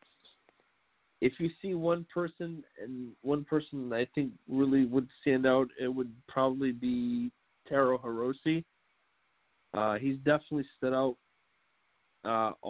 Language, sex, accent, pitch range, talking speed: English, male, American, 115-135 Hz, 125 wpm